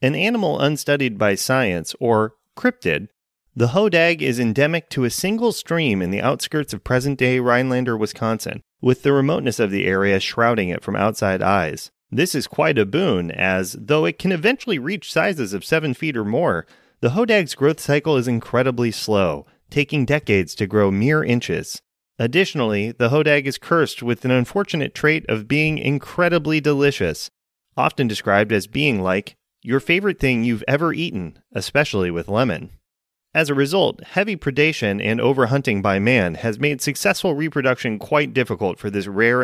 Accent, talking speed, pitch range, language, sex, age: American, 165 wpm, 110-155 Hz, English, male, 30-49